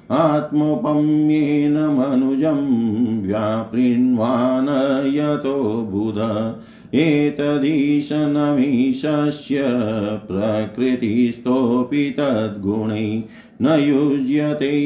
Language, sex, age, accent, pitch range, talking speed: Hindi, male, 50-69, native, 110-145 Hz, 45 wpm